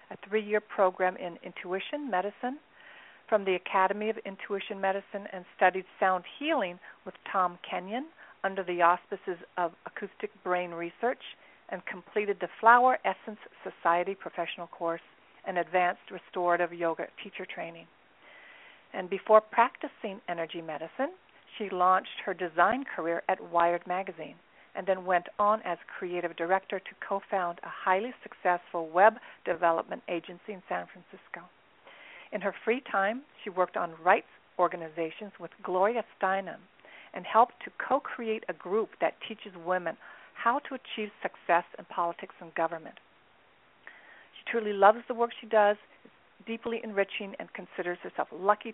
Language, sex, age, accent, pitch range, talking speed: English, female, 50-69, American, 175-220 Hz, 140 wpm